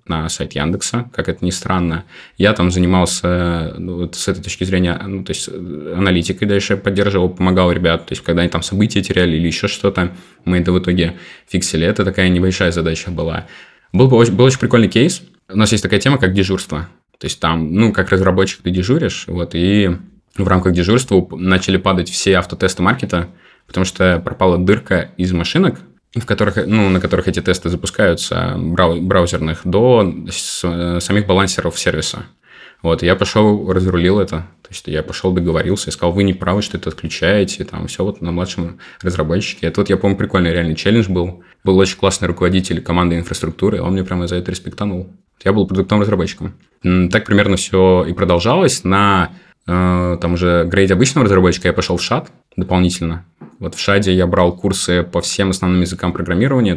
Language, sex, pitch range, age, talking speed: Russian, male, 85-100 Hz, 20-39, 185 wpm